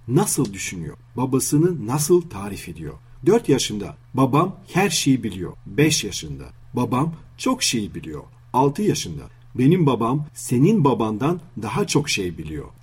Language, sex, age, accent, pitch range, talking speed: Turkish, male, 40-59, native, 120-150 Hz, 130 wpm